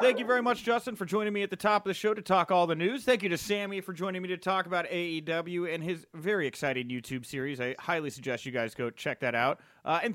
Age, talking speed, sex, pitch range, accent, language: 30-49, 280 wpm, male, 145-195 Hz, American, English